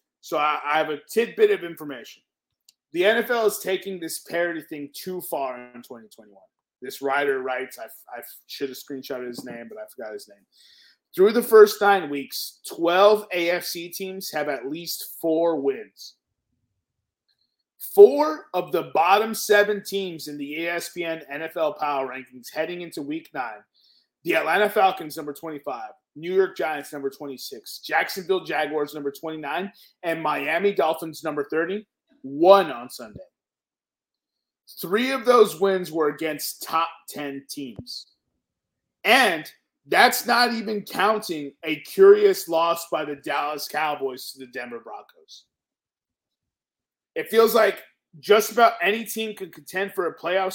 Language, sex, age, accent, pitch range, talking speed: English, male, 30-49, American, 150-210 Hz, 145 wpm